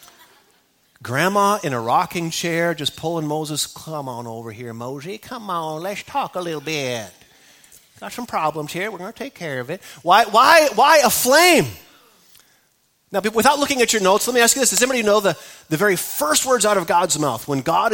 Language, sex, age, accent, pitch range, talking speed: English, male, 30-49, American, 140-200 Hz, 205 wpm